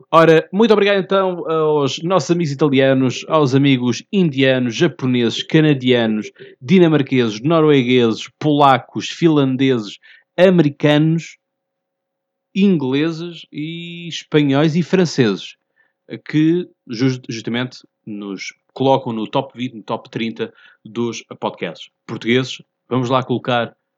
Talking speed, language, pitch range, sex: 95 wpm, Portuguese, 125-160 Hz, male